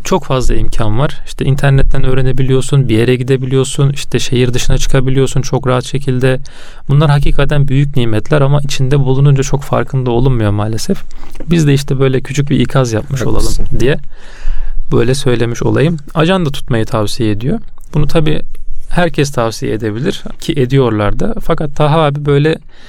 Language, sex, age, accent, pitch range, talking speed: Turkish, male, 30-49, native, 125-150 Hz, 150 wpm